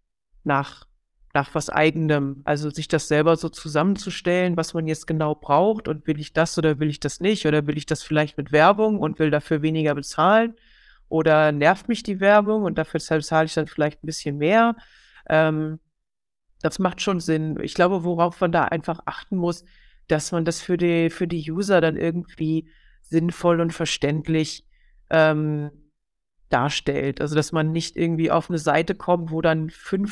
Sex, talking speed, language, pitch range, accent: female, 180 wpm, German, 155-180 Hz, German